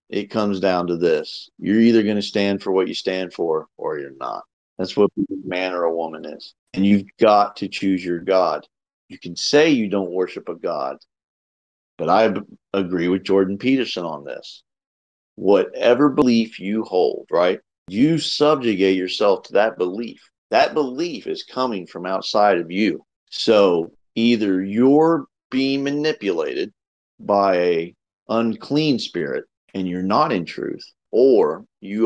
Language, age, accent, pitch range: English, 40-59, American, 95-120 Hz